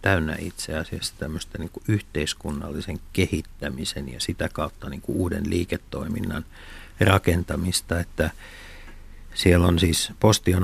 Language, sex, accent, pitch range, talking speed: Finnish, male, native, 85-95 Hz, 100 wpm